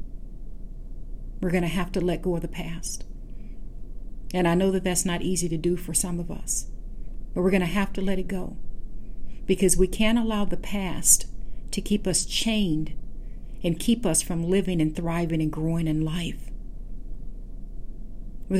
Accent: American